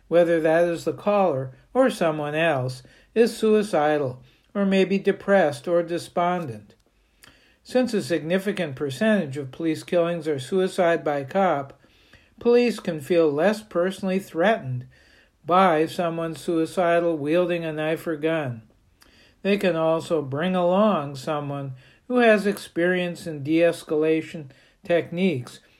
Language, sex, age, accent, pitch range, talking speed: English, male, 60-79, American, 155-195 Hz, 125 wpm